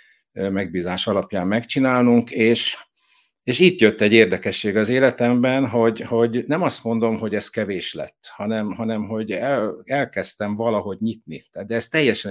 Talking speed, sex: 140 wpm, male